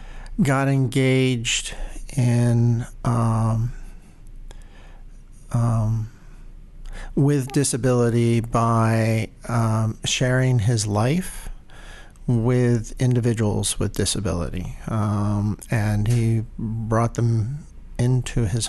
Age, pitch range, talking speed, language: 50-69, 110-130 Hz, 75 wpm, English